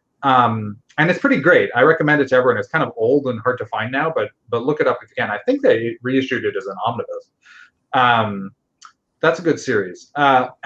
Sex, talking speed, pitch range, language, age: male, 230 wpm, 115-150 Hz, English, 30-49